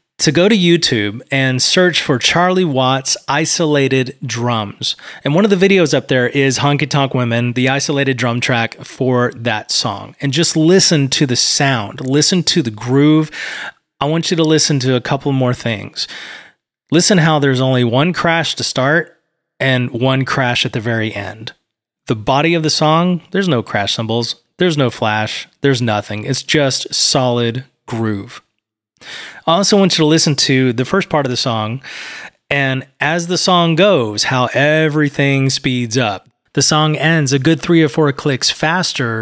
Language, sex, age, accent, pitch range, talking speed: English, male, 30-49, American, 125-160 Hz, 175 wpm